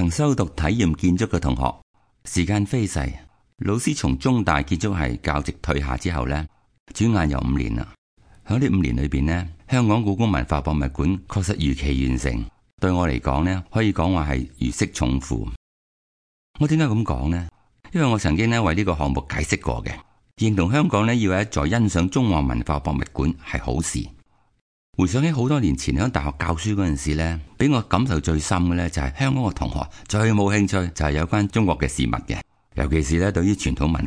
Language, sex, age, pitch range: Chinese, male, 60-79, 75-105 Hz